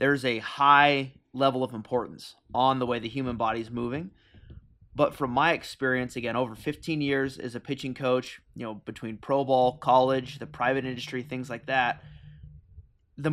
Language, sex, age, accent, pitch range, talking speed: English, male, 20-39, American, 115-140 Hz, 170 wpm